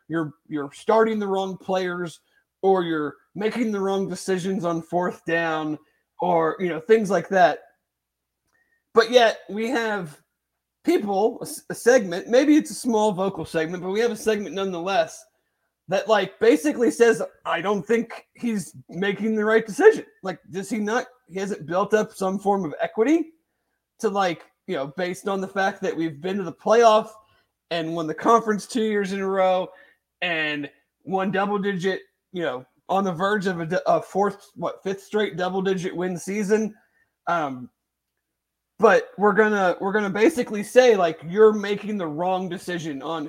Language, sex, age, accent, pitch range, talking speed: English, male, 30-49, American, 175-220 Hz, 170 wpm